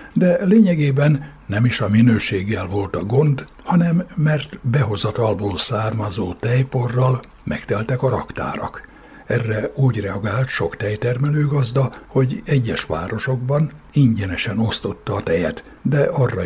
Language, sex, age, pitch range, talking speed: Hungarian, male, 60-79, 105-135 Hz, 115 wpm